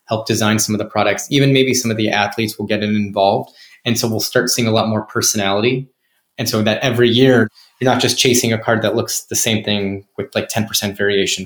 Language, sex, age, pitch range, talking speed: English, male, 20-39, 110-125 Hz, 230 wpm